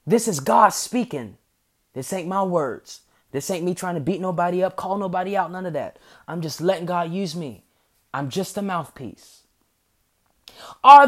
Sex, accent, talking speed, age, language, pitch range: male, American, 180 wpm, 20-39, English, 165-225 Hz